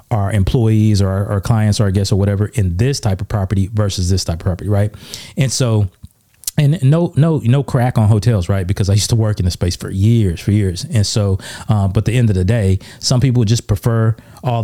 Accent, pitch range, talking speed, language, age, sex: American, 100-120 Hz, 240 wpm, English, 30-49, male